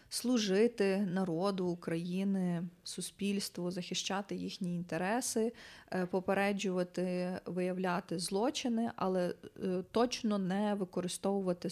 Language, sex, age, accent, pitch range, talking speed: Ukrainian, female, 20-39, native, 175-215 Hz, 70 wpm